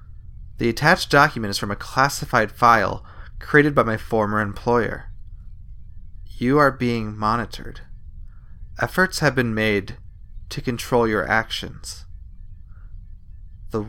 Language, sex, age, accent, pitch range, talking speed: English, male, 30-49, American, 90-115 Hz, 110 wpm